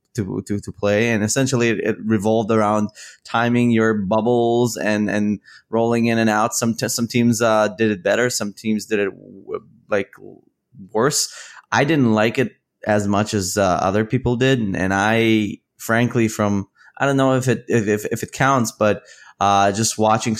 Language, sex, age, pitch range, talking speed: English, male, 20-39, 110-140 Hz, 190 wpm